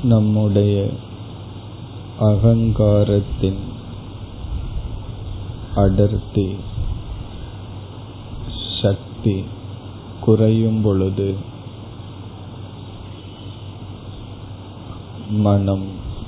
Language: Tamil